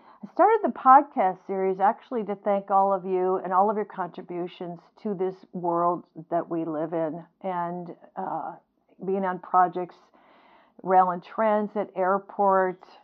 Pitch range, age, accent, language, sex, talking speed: 190-225 Hz, 50-69, American, English, female, 145 wpm